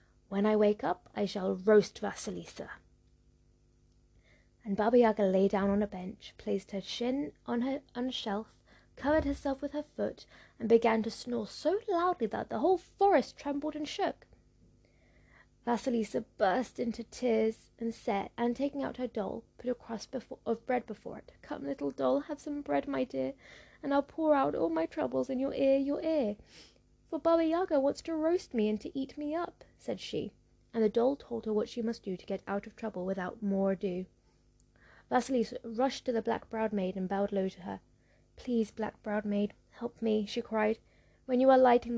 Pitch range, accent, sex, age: 195-260 Hz, British, female, 20-39